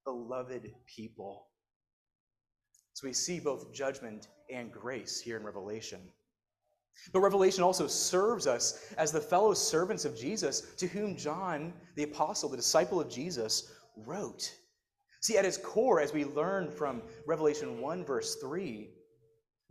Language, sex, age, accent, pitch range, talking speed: English, male, 30-49, American, 115-175 Hz, 135 wpm